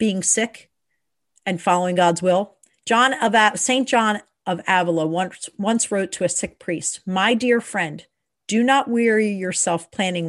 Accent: American